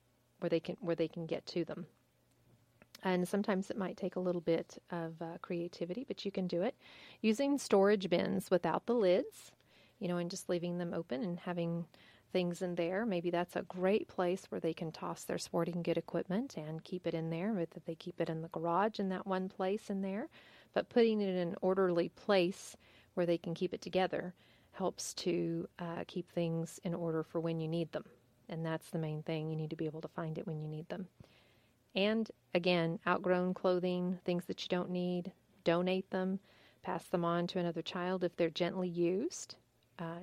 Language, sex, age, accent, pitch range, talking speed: English, female, 40-59, American, 165-190 Hz, 205 wpm